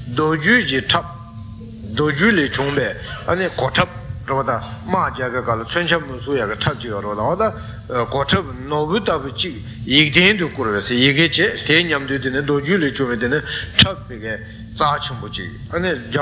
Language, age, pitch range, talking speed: Italian, 60-79, 115-165 Hz, 95 wpm